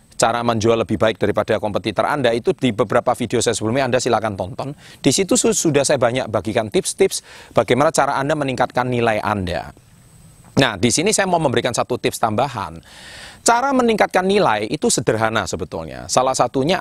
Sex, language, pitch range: male, Indonesian, 115-155 Hz